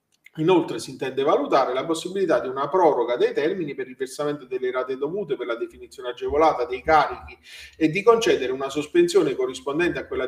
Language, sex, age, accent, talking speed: Italian, male, 40-59, native, 180 wpm